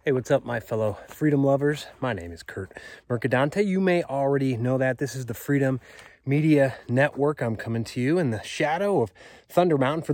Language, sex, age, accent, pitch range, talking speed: English, male, 30-49, American, 110-140 Hz, 200 wpm